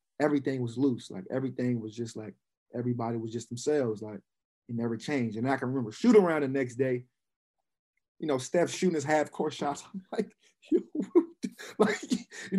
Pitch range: 125-155 Hz